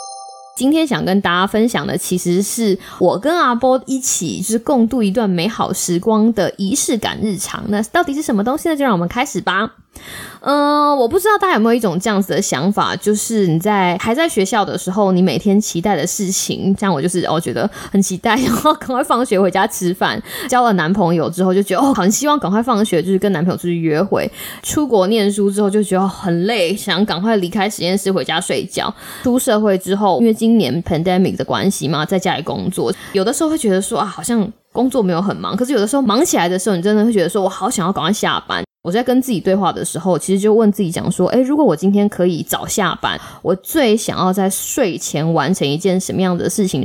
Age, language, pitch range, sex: 20-39, Chinese, 180-225 Hz, female